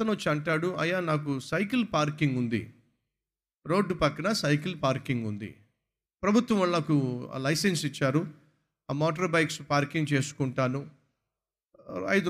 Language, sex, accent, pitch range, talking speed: Telugu, male, native, 135-205 Hz, 115 wpm